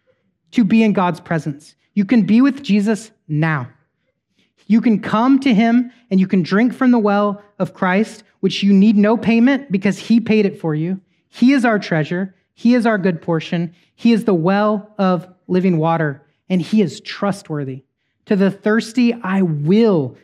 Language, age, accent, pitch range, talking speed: English, 30-49, American, 180-230 Hz, 180 wpm